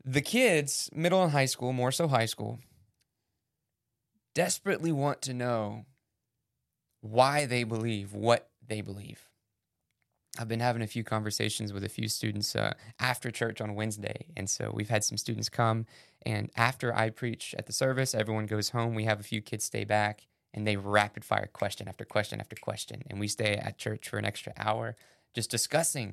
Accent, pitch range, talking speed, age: American, 105-125 Hz, 180 wpm, 20-39